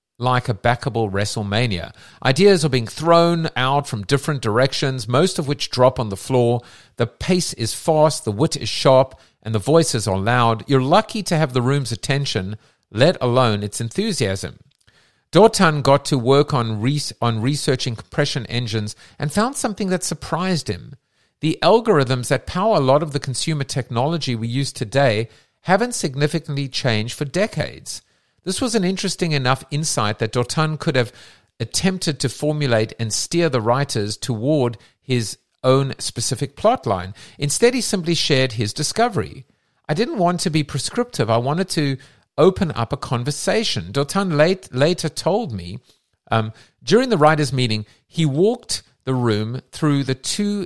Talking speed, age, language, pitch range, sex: 160 wpm, 50-69, English, 120-160 Hz, male